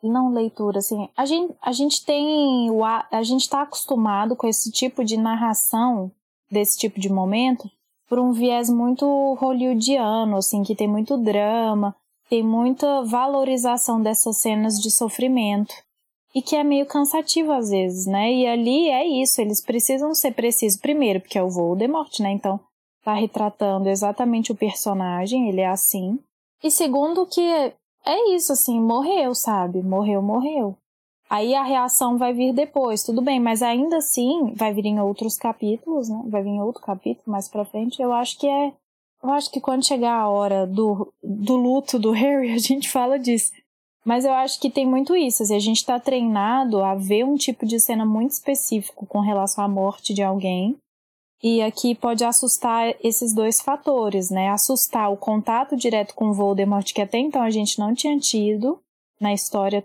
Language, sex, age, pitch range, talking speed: Portuguese, female, 10-29, 210-270 Hz, 175 wpm